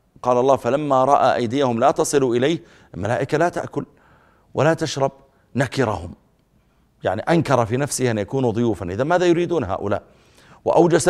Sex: male